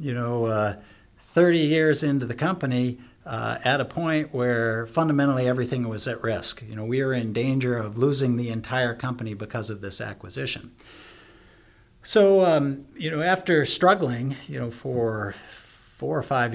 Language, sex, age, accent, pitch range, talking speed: English, male, 50-69, American, 110-140 Hz, 165 wpm